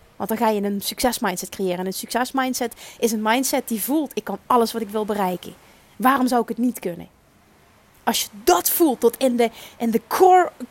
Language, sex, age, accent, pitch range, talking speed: Dutch, female, 30-49, Dutch, 230-290 Hz, 215 wpm